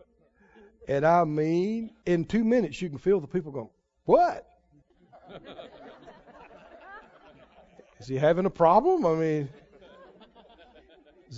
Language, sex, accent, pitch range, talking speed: English, male, American, 180-285 Hz, 110 wpm